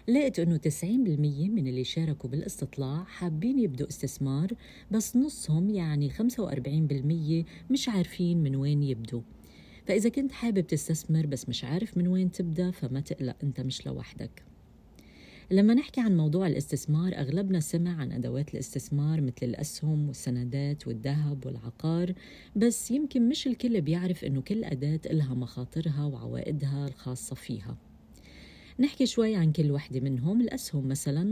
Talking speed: 135 wpm